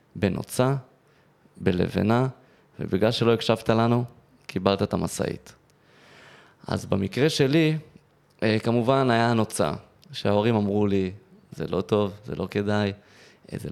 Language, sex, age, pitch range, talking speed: Hebrew, male, 20-39, 100-120 Hz, 110 wpm